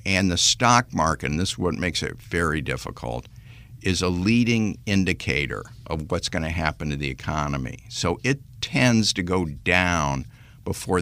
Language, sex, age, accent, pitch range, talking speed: English, male, 60-79, American, 85-115 Hz, 170 wpm